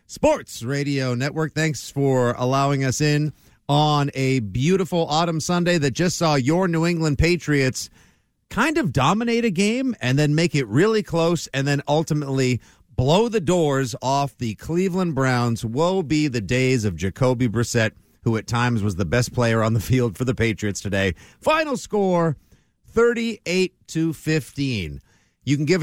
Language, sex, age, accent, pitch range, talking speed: English, male, 50-69, American, 130-180 Hz, 160 wpm